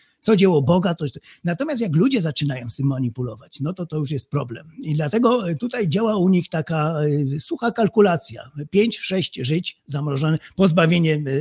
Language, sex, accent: Polish, male, native